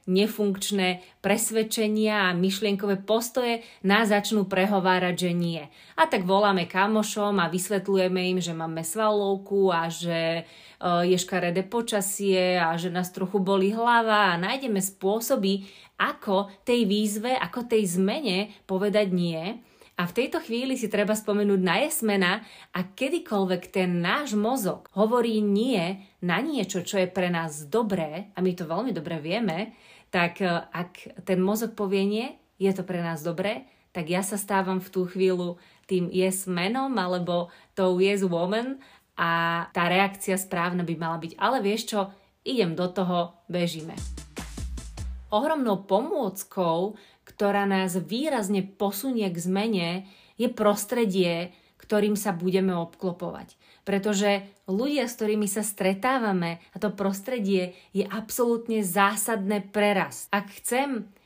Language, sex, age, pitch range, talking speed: Slovak, female, 30-49, 180-215 Hz, 135 wpm